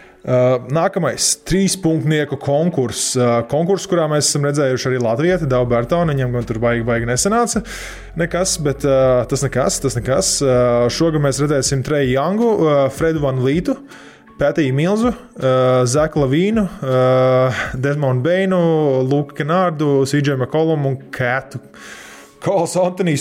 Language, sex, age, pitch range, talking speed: English, male, 20-39, 125-155 Hz, 140 wpm